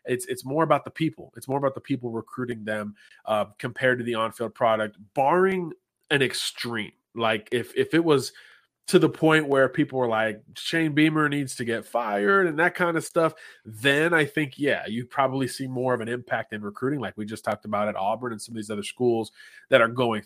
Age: 30-49